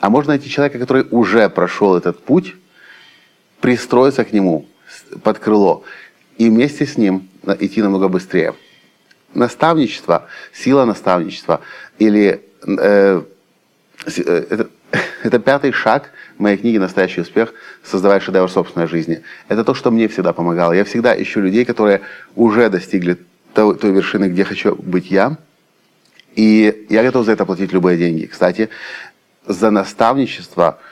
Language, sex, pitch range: Russian, male, 95-110 Hz